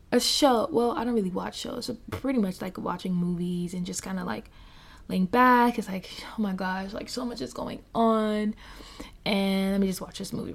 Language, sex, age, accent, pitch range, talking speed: English, female, 20-39, American, 185-225 Hz, 215 wpm